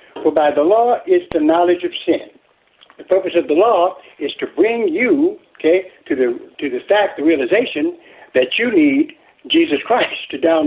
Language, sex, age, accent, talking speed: English, male, 60-79, American, 185 wpm